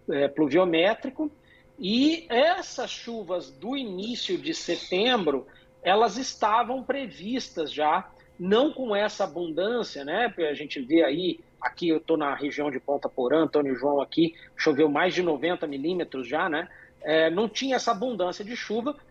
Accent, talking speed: Brazilian, 150 wpm